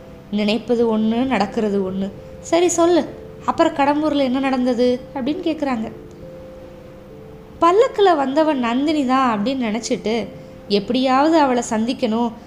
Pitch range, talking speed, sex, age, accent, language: 220-300 Hz, 100 wpm, female, 20-39, native, Tamil